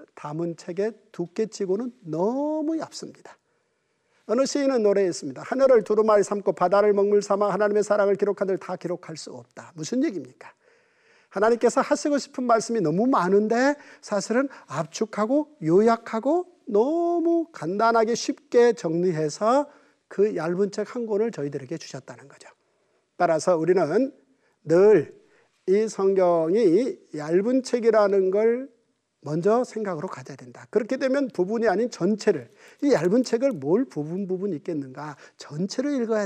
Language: Korean